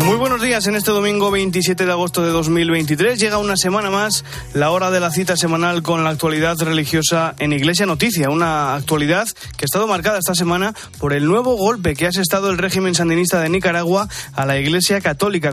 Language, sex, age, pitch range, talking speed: Spanish, male, 20-39, 155-195 Hz, 200 wpm